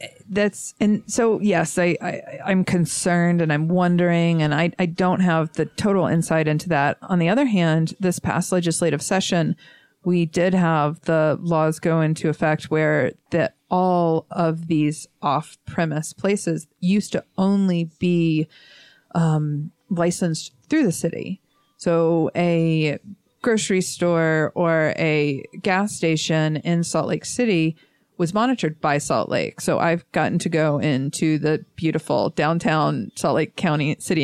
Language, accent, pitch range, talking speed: English, American, 155-185 Hz, 145 wpm